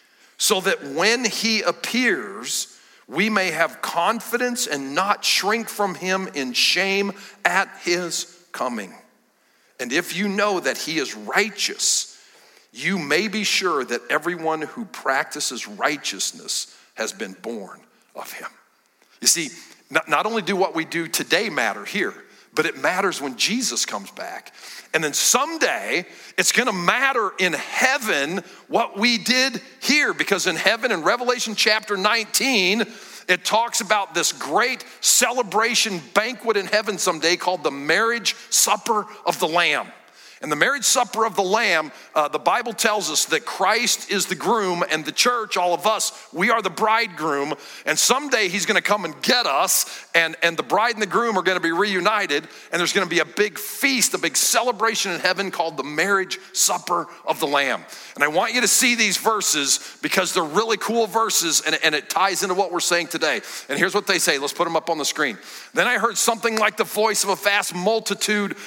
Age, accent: 50-69, American